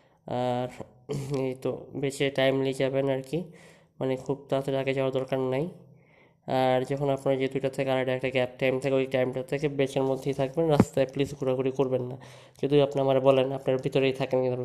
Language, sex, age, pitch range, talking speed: Bengali, female, 20-39, 130-145 Hz, 160 wpm